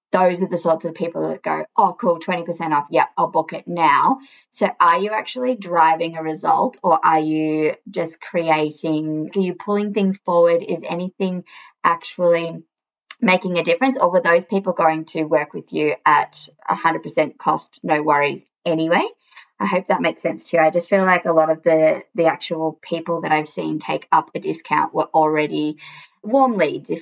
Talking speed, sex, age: 185 wpm, female, 20-39